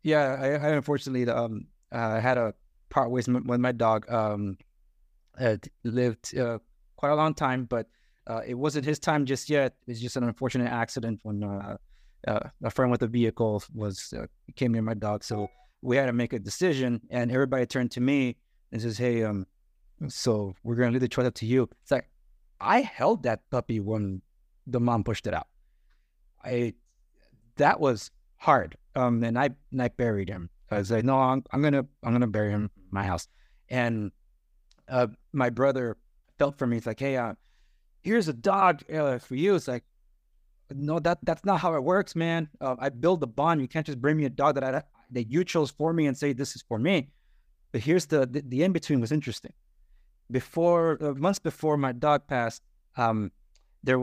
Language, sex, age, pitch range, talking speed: English, male, 30-49, 110-140 Hz, 200 wpm